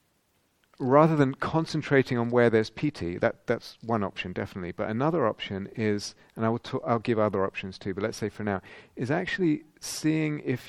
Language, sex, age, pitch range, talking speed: English, male, 40-59, 105-130 Hz, 195 wpm